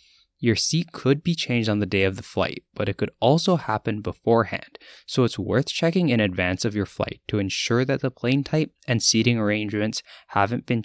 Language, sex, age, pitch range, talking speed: English, male, 10-29, 95-130 Hz, 205 wpm